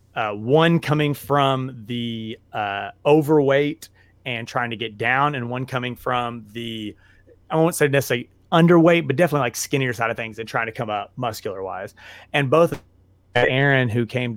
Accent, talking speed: American, 170 wpm